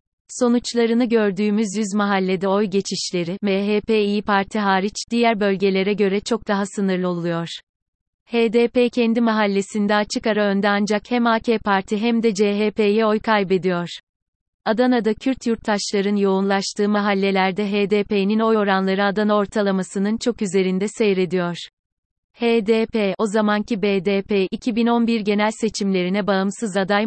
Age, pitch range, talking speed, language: 30-49, 195-225 Hz, 120 wpm, Turkish